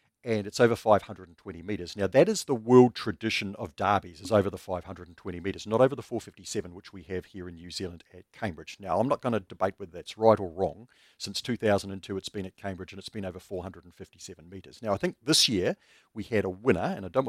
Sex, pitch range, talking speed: male, 95-110 Hz, 230 wpm